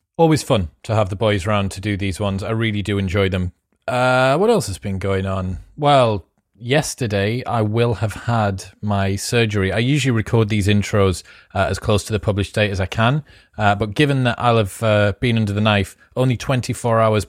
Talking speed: 210 wpm